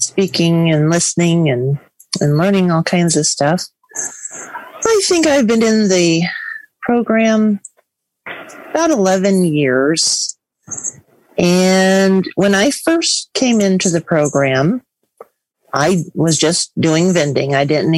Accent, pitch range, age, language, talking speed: American, 155-205 Hz, 40-59, English, 115 wpm